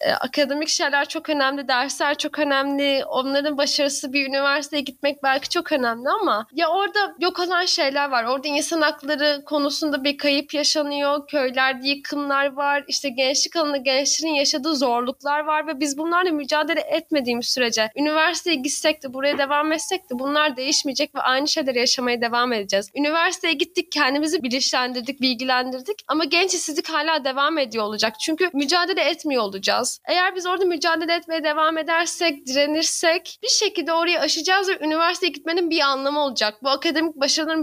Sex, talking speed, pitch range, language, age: female, 155 wpm, 270-330 Hz, Turkish, 10-29